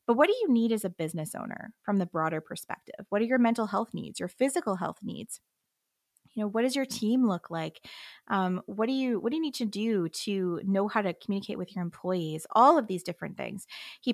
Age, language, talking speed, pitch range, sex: 20-39, English, 235 wpm, 170-235 Hz, female